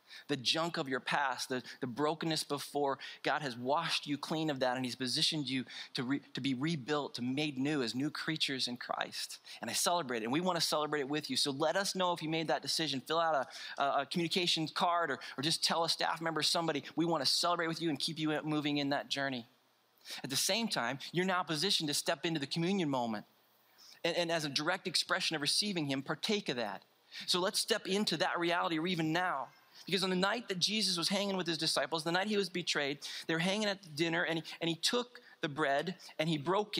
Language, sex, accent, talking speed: English, male, American, 235 wpm